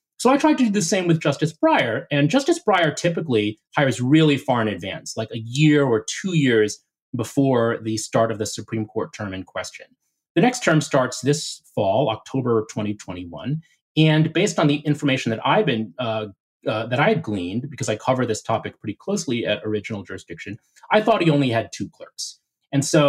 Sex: male